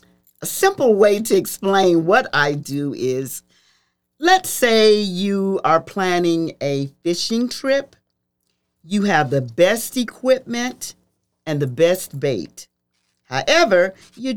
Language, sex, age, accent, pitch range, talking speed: English, male, 50-69, American, 135-220 Hz, 115 wpm